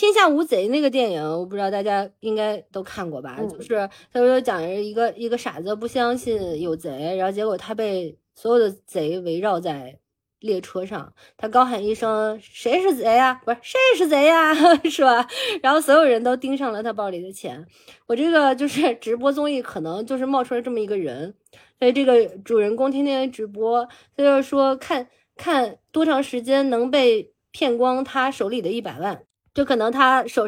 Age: 20-39